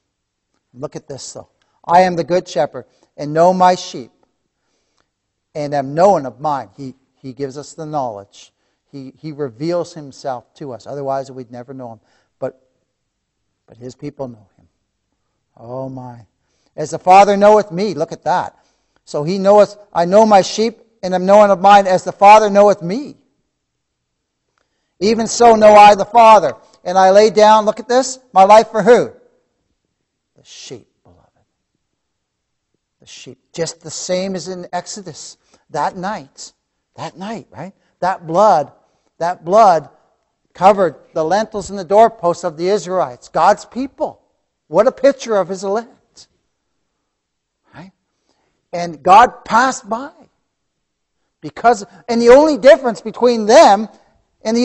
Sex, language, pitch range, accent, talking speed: male, English, 145-215 Hz, American, 150 wpm